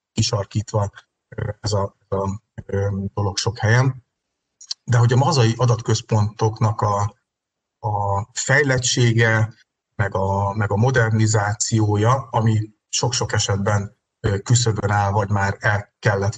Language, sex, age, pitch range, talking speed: Hungarian, male, 30-49, 105-120 Hz, 105 wpm